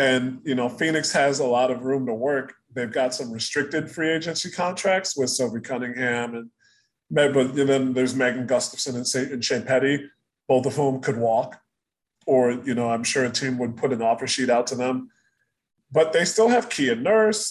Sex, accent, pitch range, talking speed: male, American, 125-155 Hz, 195 wpm